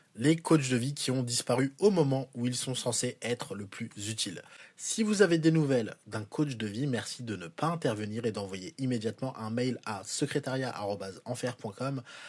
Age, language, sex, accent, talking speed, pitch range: 20-39, French, male, French, 185 wpm, 115-145 Hz